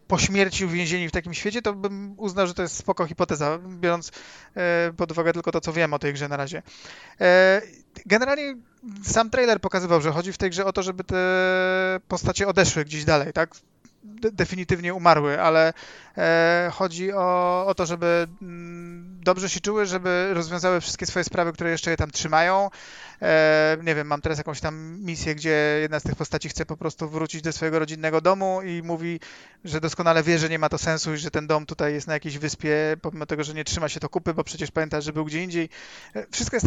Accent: native